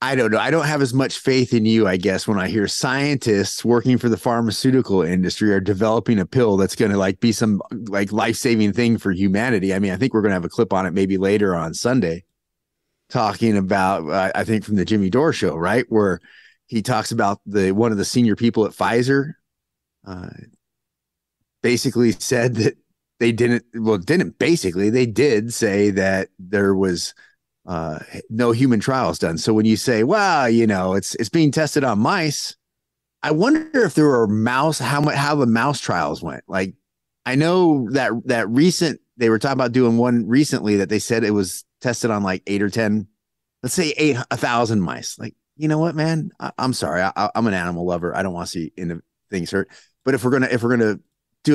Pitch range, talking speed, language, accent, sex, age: 100-130 Hz, 215 wpm, English, American, male, 30-49